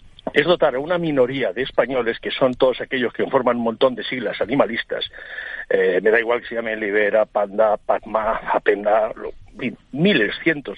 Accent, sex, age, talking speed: Spanish, male, 60-79, 175 wpm